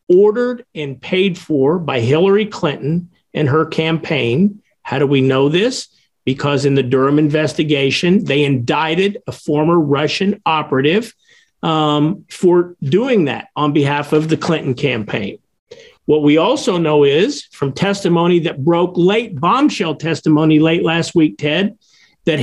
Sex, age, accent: male, 50-69, American